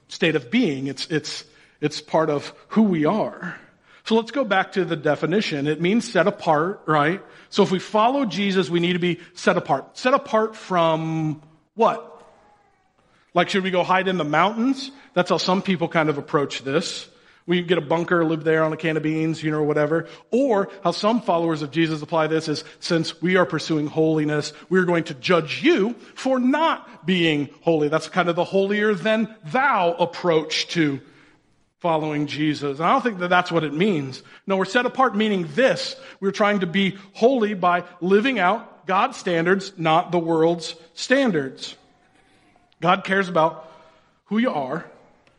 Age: 40-59